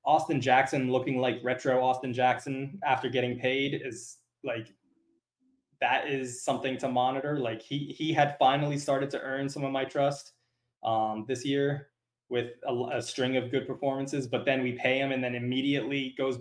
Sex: male